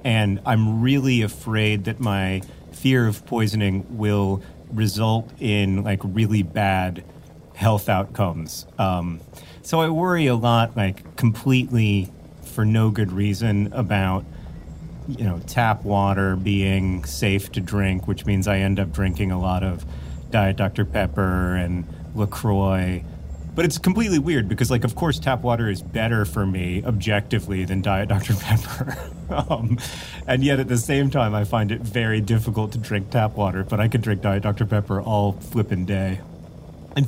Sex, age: male, 30-49